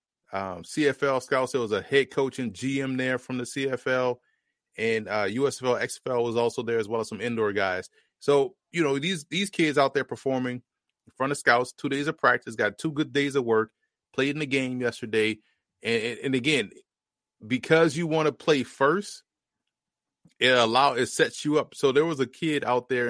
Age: 30-49